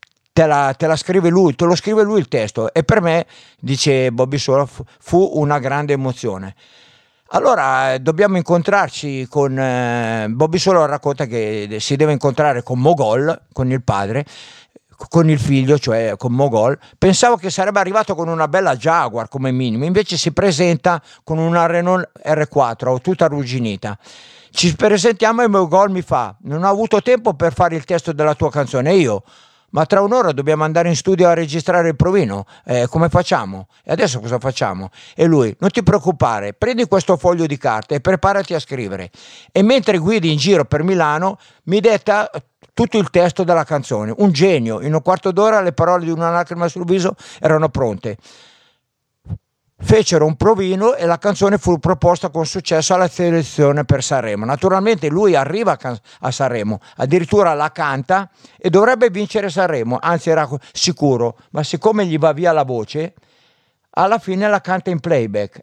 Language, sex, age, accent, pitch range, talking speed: Italian, male, 50-69, native, 135-185 Hz, 170 wpm